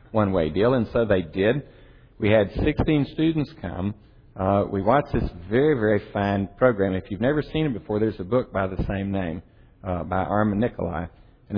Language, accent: English, American